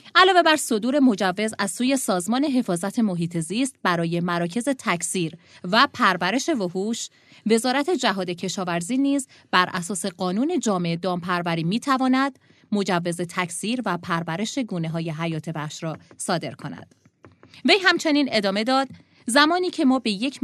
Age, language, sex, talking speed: 20-39, Persian, female, 135 wpm